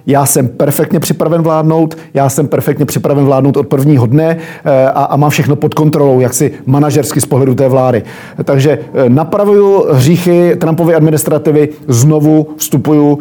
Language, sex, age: Czech, male, 40-59